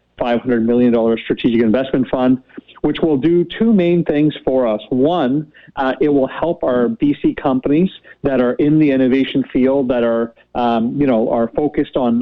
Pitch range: 125-150 Hz